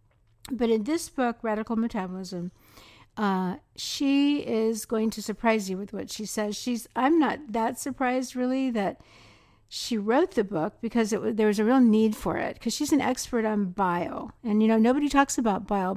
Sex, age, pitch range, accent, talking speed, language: female, 60-79, 200-250 Hz, American, 190 wpm, English